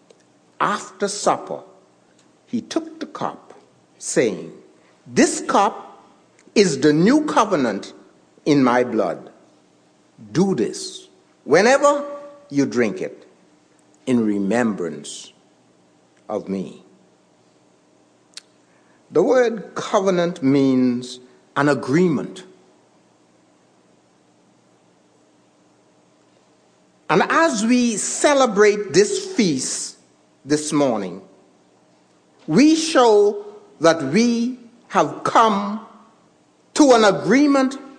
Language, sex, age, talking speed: English, male, 60-79, 75 wpm